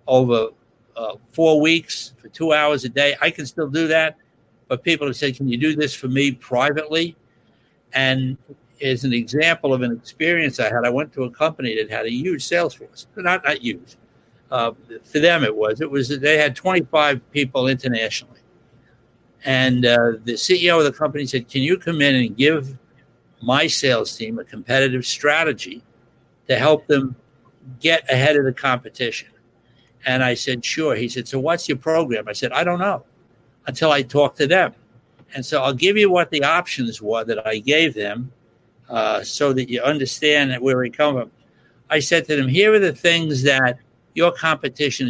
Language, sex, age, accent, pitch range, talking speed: English, male, 60-79, American, 125-150 Hz, 190 wpm